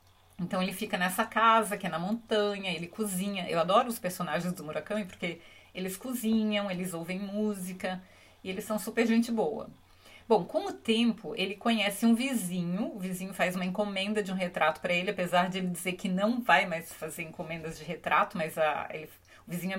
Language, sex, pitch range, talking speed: Portuguese, female, 180-230 Hz, 190 wpm